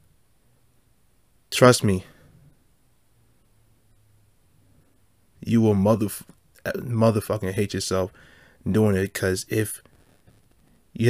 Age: 20-39